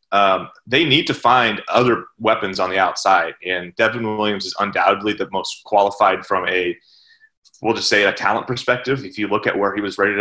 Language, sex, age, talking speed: English, male, 30-49, 200 wpm